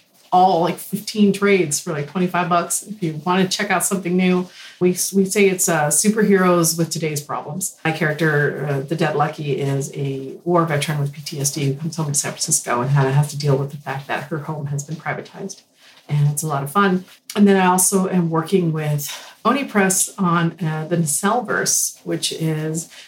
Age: 40-59